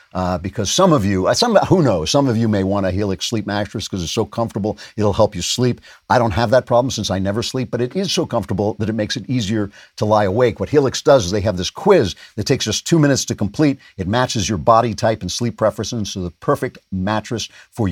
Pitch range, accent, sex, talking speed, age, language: 95-125 Hz, American, male, 255 wpm, 50-69, English